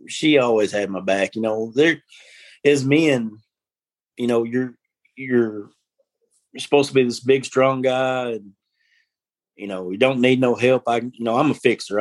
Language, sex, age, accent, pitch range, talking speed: English, male, 30-49, American, 105-130 Hz, 185 wpm